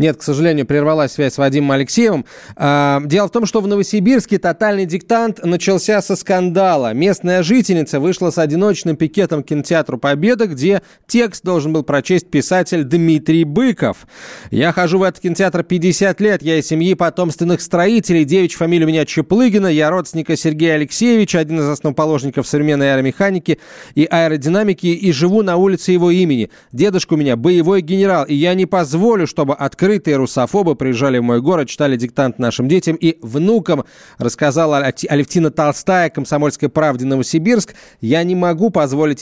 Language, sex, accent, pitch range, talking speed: Russian, male, native, 145-185 Hz, 155 wpm